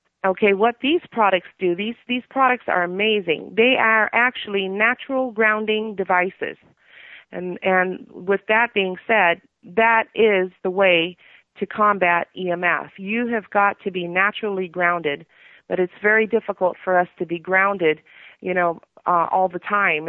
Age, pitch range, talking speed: 40-59, 180-225 Hz, 150 wpm